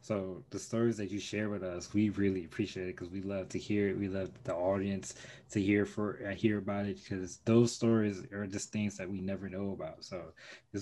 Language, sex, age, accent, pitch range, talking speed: English, male, 20-39, American, 95-115 Hz, 235 wpm